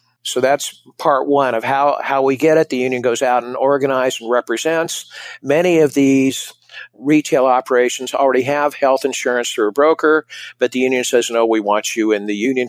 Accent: American